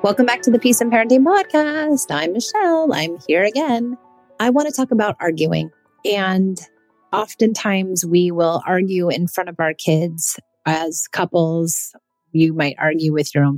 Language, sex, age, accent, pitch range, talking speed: English, female, 30-49, American, 160-205 Hz, 165 wpm